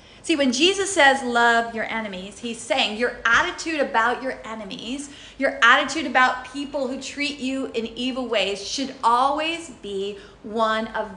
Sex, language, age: female, English, 40-59